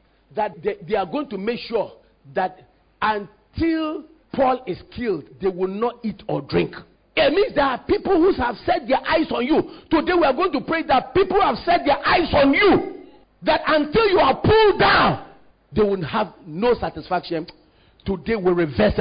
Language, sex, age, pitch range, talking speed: English, male, 50-69, 265-385 Hz, 185 wpm